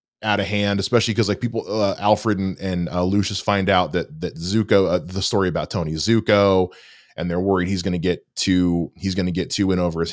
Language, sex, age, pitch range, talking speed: English, male, 20-39, 80-95 Hz, 235 wpm